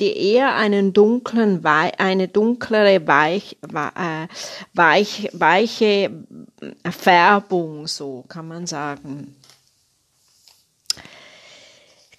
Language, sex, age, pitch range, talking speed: German, female, 40-59, 175-220 Hz, 70 wpm